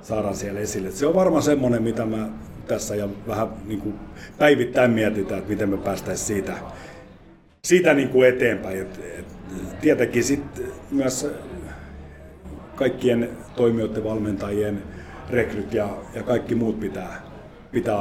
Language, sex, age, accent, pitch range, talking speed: Finnish, male, 50-69, native, 100-115 Hz, 135 wpm